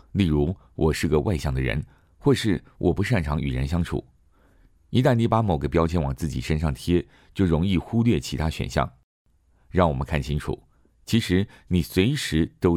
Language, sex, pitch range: Chinese, male, 70-90 Hz